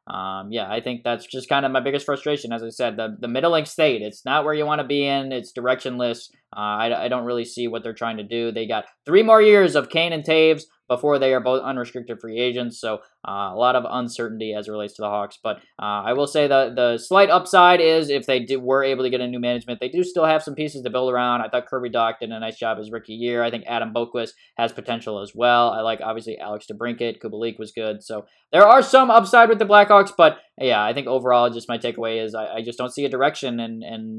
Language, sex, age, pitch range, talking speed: English, male, 10-29, 110-145 Hz, 260 wpm